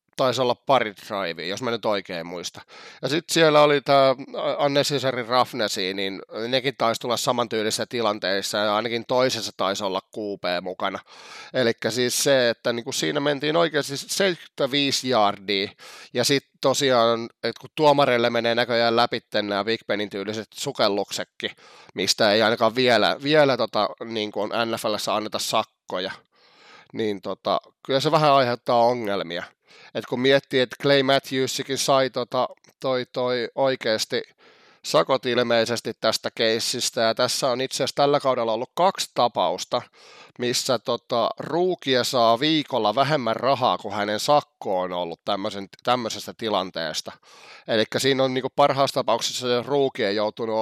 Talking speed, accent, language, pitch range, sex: 135 wpm, native, Finnish, 110-135 Hz, male